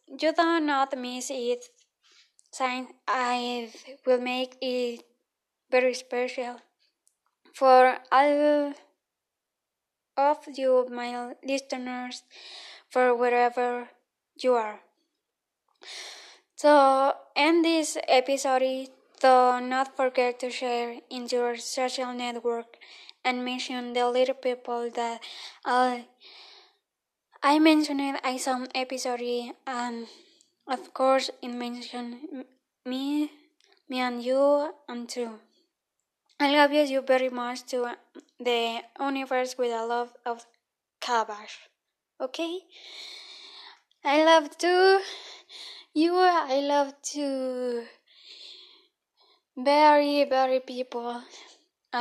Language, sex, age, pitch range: Korean, female, 10-29, 245-305 Hz